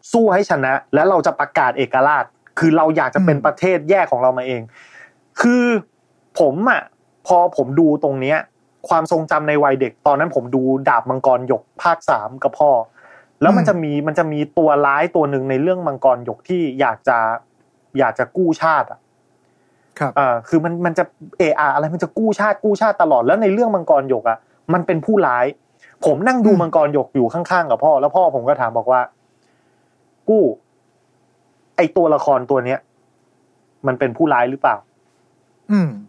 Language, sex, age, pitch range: Thai, male, 30-49, 135-185 Hz